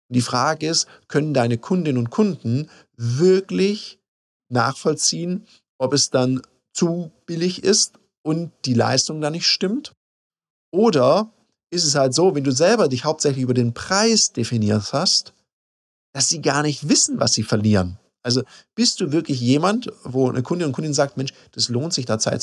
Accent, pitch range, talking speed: German, 120-165 Hz, 170 wpm